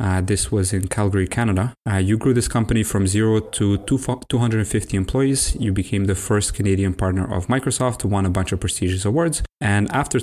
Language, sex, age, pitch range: English, male, 30-49, 95-120 Hz